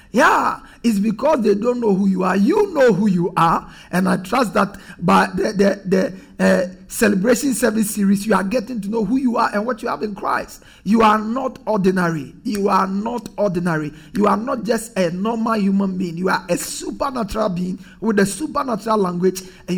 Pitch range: 190-245 Hz